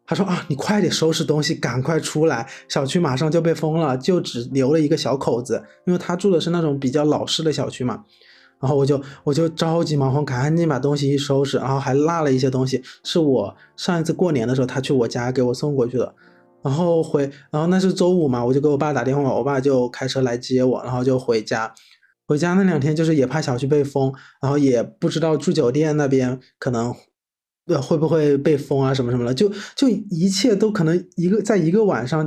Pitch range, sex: 135-160 Hz, male